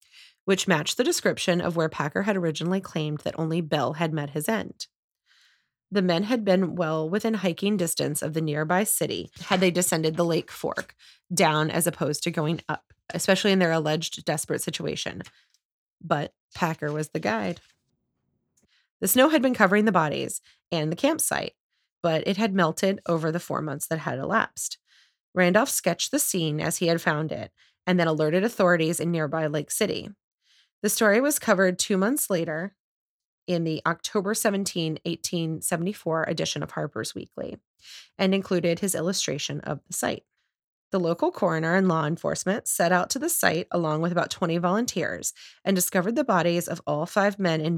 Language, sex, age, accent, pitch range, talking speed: English, female, 30-49, American, 160-195 Hz, 175 wpm